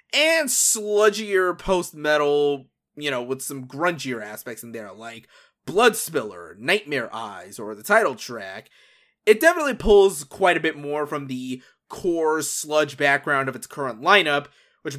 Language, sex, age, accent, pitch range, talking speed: English, male, 20-39, American, 130-200 Hz, 150 wpm